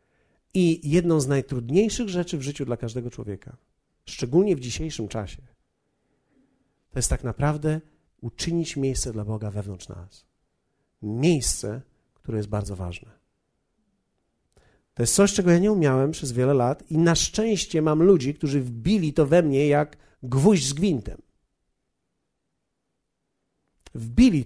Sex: male